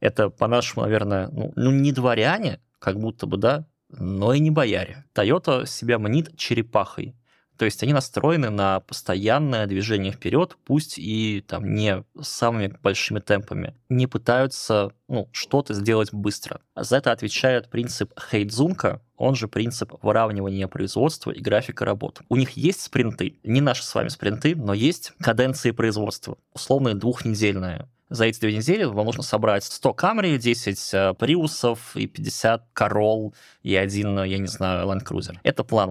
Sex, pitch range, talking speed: male, 105-135 Hz, 150 wpm